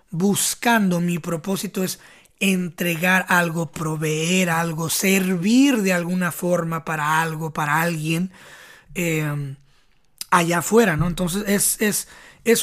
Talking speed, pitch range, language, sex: 115 wpm, 170-215 Hz, Spanish, male